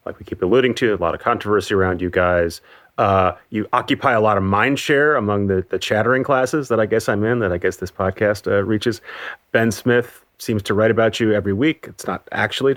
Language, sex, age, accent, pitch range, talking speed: English, male, 30-49, American, 90-115 Hz, 230 wpm